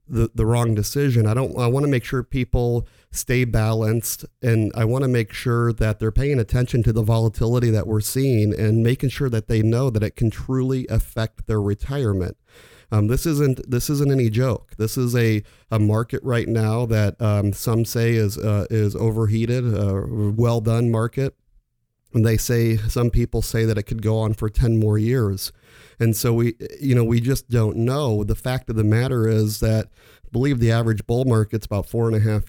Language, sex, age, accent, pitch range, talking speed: English, male, 40-59, American, 110-125 Hz, 205 wpm